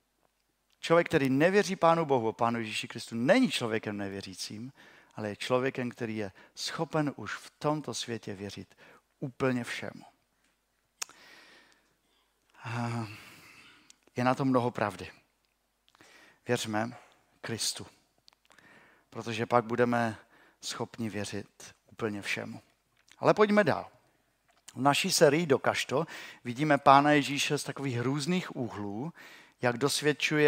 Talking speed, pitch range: 105 wpm, 115-155 Hz